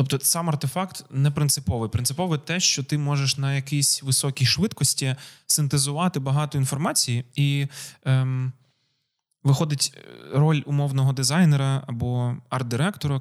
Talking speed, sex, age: 115 wpm, male, 20-39